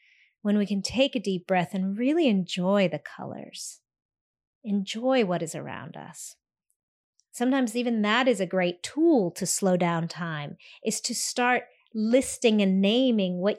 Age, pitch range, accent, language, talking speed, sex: 30-49, 185-245 Hz, American, English, 155 wpm, female